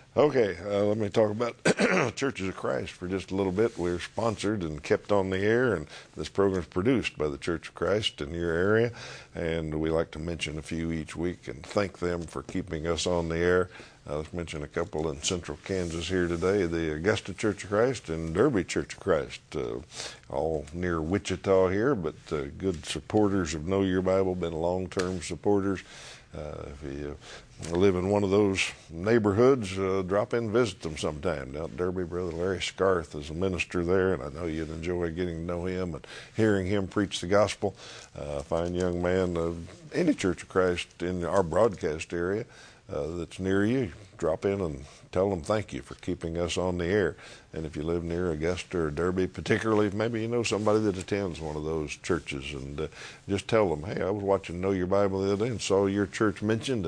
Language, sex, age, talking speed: English, male, 50-69, 210 wpm